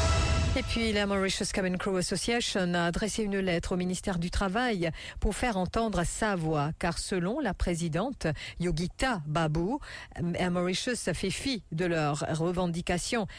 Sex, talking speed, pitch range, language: female, 145 wpm, 160-200 Hz, English